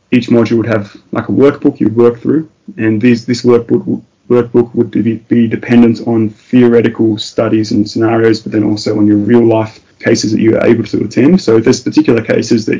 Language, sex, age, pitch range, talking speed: English, male, 20-39, 105-115 Hz, 200 wpm